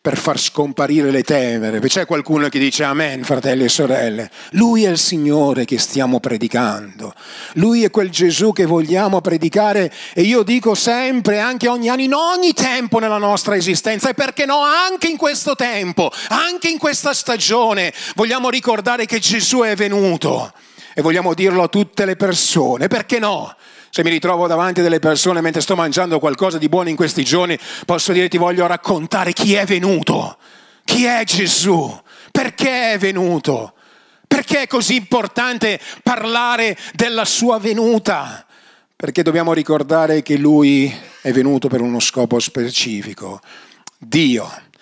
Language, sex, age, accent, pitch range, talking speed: Italian, male, 40-59, native, 150-230 Hz, 155 wpm